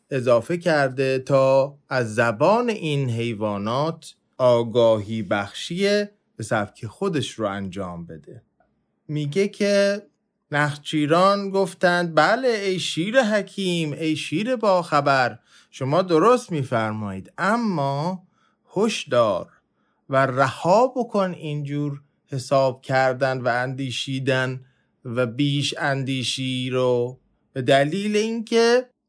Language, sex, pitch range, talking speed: English, male, 130-190 Hz, 95 wpm